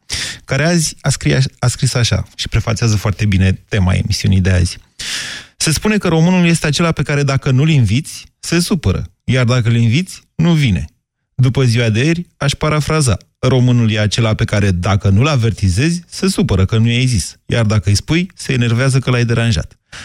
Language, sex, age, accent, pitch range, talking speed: Romanian, male, 30-49, native, 100-130 Hz, 185 wpm